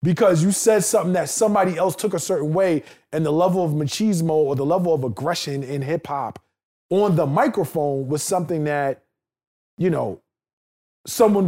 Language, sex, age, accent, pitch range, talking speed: English, male, 20-39, American, 135-200 Hz, 175 wpm